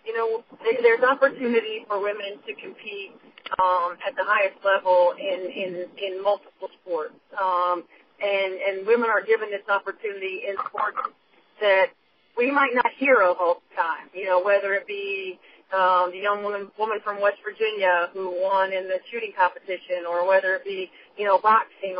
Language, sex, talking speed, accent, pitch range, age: English, female, 170 wpm, American, 185-230 Hz, 40-59